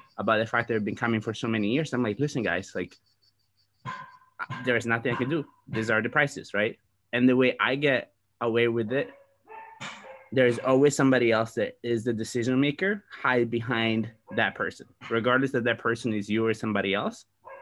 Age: 20-39